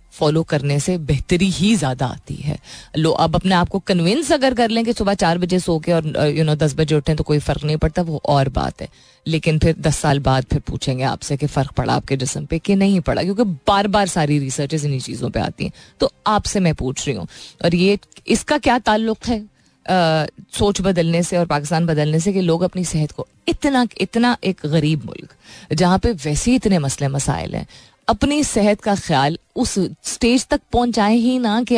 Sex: female